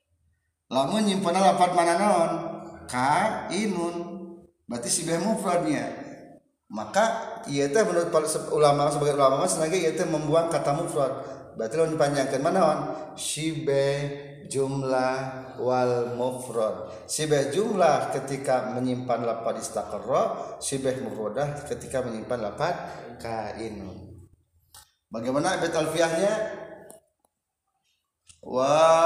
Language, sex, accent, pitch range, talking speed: Indonesian, male, native, 125-160 Hz, 95 wpm